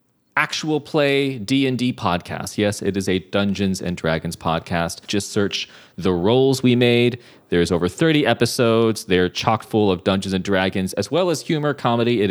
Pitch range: 95-125 Hz